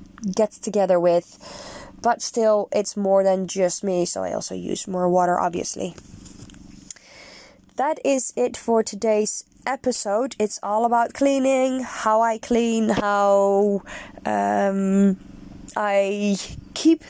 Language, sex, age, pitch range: English, female, 20-39, 190-225 Hz